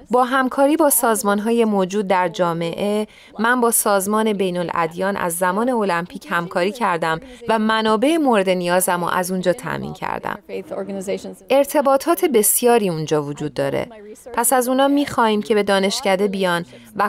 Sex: female